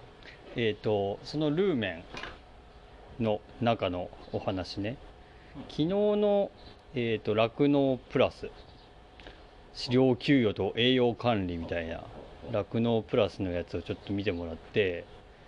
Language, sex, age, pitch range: Japanese, male, 40-59, 100-130 Hz